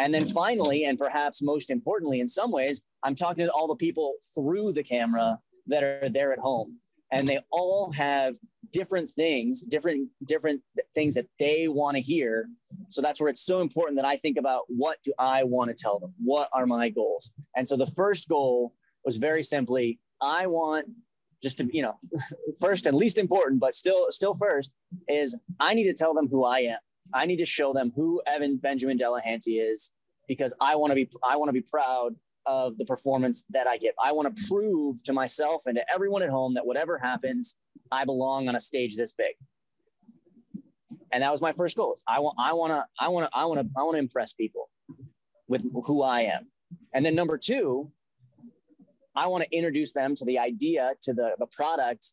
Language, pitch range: English, 130-175 Hz